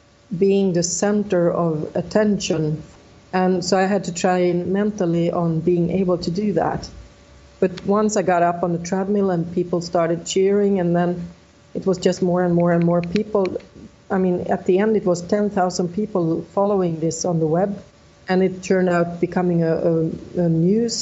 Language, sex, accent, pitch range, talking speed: English, female, Swedish, 170-195 Hz, 180 wpm